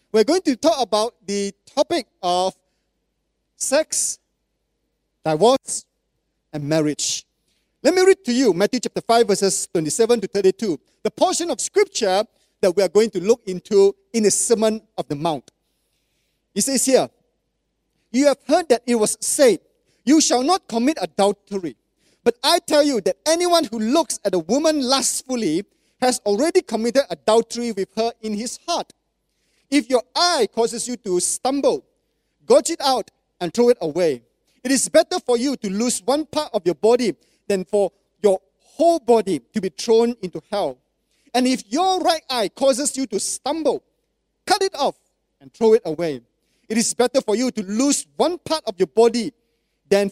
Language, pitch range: English, 195-280 Hz